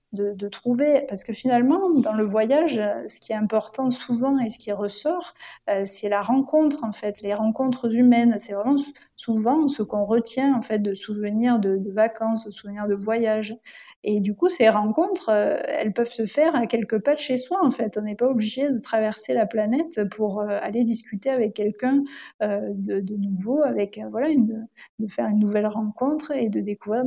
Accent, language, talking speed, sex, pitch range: French, French, 195 wpm, female, 210-255 Hz